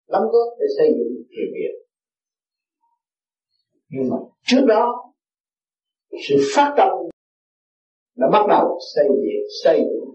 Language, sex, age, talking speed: Vietnamese, male, 50-69, 125 wpm